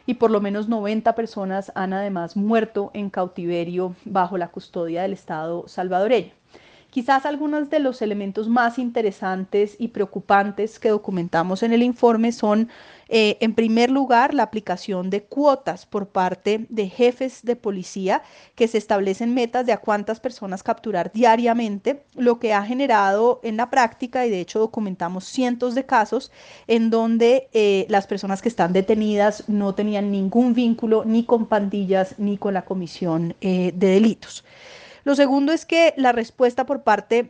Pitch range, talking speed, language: 195-245 Hz, 160 wpm, Spanish